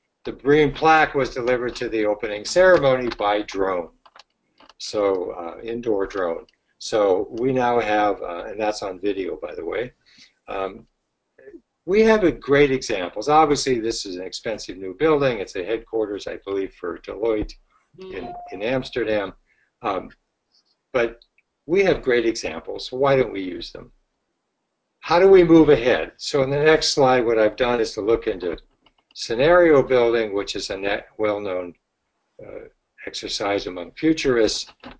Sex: male